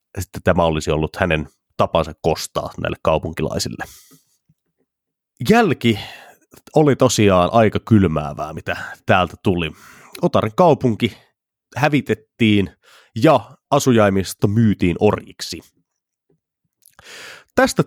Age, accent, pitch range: 30-49, native, 85-120 Hz